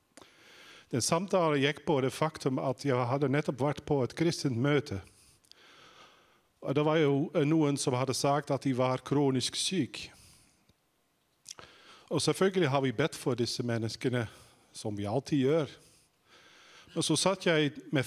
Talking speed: 145 wpm